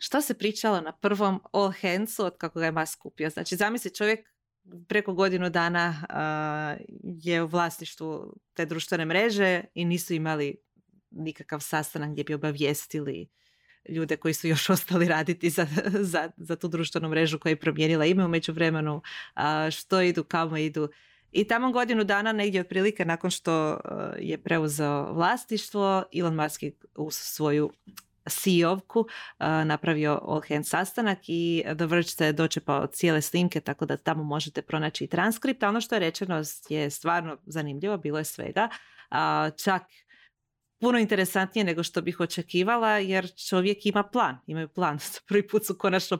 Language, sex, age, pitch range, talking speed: Croatian, female, 30-49, 155-195 Hz, 155 wpm